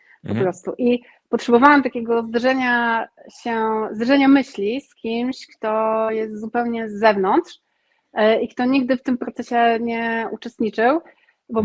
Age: 30-49